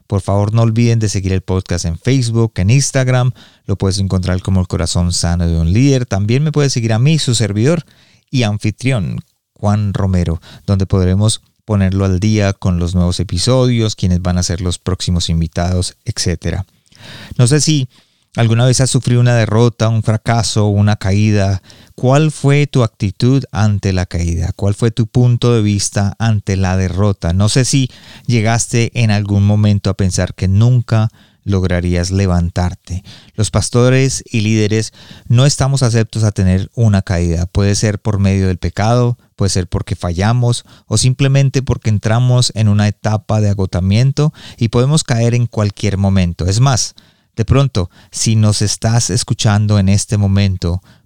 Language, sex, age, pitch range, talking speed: Spanish, male, 30-49, 95-120 Hz, 165 wpm